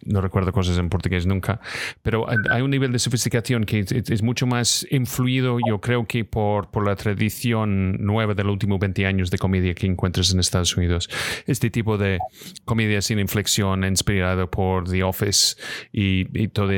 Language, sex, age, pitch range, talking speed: Spanish, male, 30-49, 95-115 Hz, 180 wpm